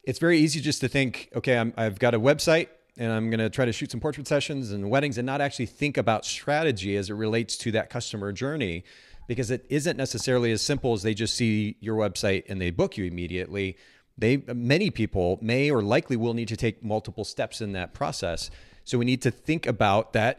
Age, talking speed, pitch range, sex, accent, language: 40-59, 220 wpm, 110-140 Hz, male, American, English